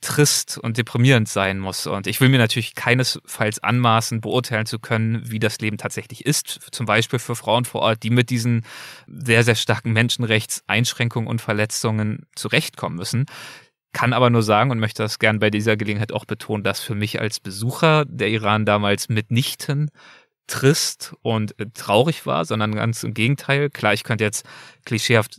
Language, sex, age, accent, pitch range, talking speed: German, male, 20-39, German, 105-130 Hz, 170 wpm